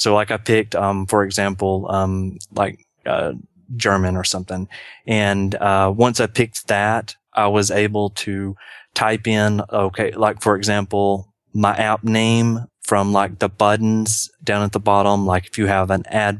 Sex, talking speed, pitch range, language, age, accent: male, 170 wpm, 95-110 Hz, English, 30-49, American